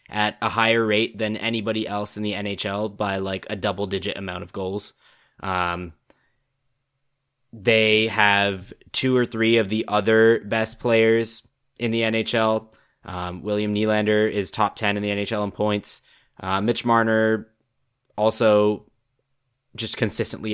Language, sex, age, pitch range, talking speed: English, male, 10-29, 100-120 Hz, 140 wpm